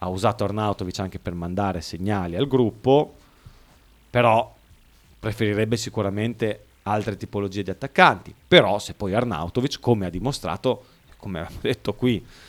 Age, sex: 30-49, male